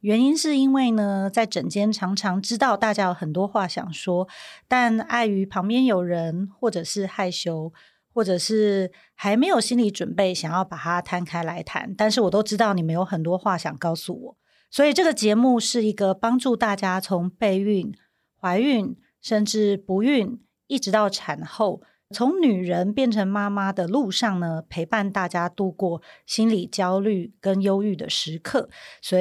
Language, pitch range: Chinese, 180-225 Hz